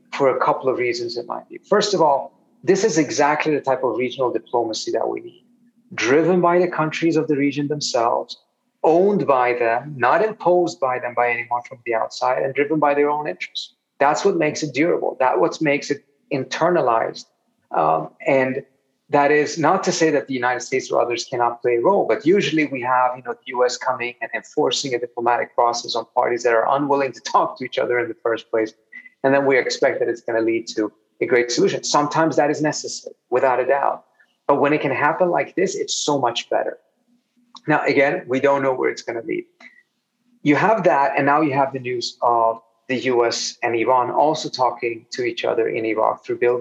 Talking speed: 210 wpm